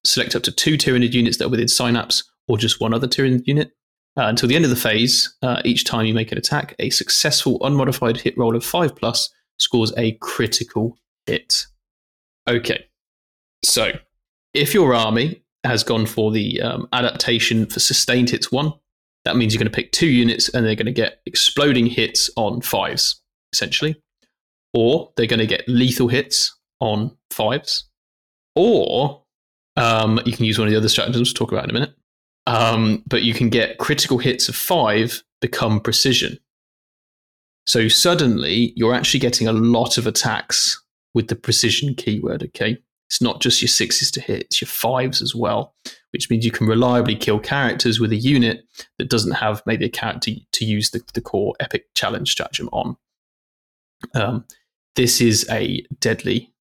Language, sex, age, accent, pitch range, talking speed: English, male, 20-39, British, 110-125 Hz, 175 wpm